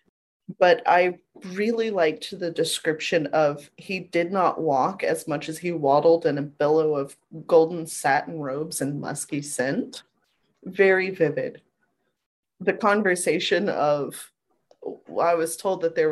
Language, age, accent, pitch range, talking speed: English, 30-49, American, 165-255 Hz, 135 wpm